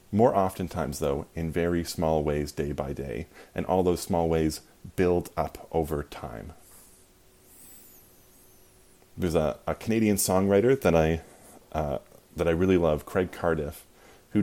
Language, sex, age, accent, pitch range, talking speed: English, male, 30-49, American, 80-95 Hz, 140 wpm